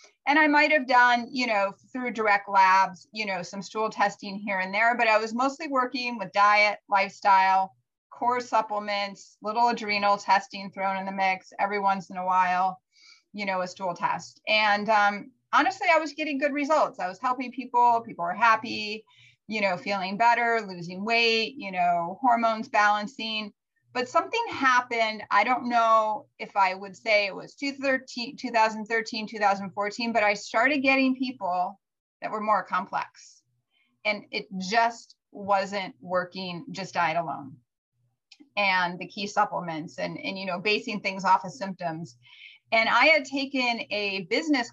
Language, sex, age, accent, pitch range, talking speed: English, female, 30-49, American, 190-240 Hz, 160 wpm